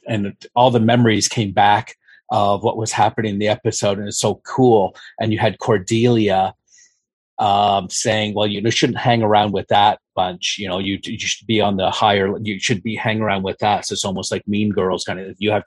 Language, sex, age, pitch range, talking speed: English, male, 40-59, 95-110 Hz, 220 wpm